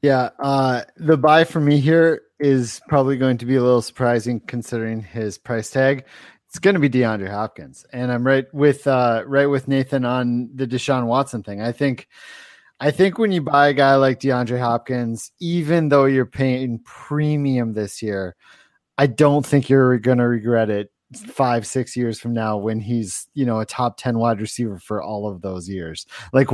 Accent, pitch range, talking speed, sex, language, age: American, 115-140 Hz, 190 wpm, male, English, 30-49